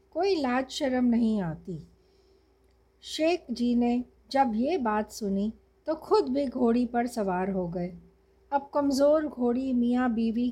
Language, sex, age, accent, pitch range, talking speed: Hindi, female, 60-79, native, 210-285 Hz, 145 wpm